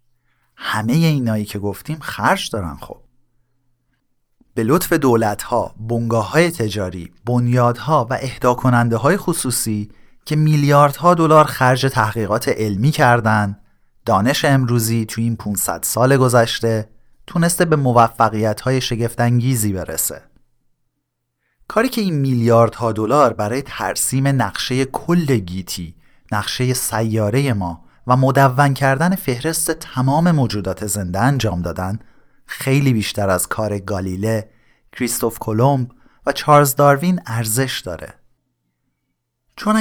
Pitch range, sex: 110-140 Hz, male